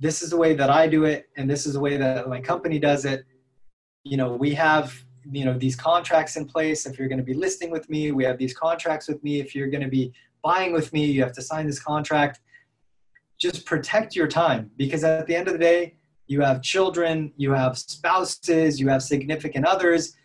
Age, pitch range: 20-39, 140-170 Hz